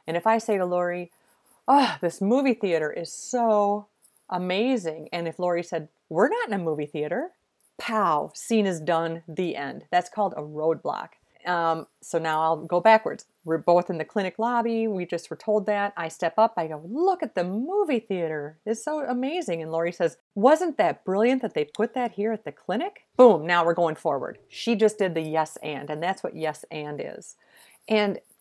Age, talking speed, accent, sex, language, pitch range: 40-59, 200 wpm, American, female, English, 165-240 Hz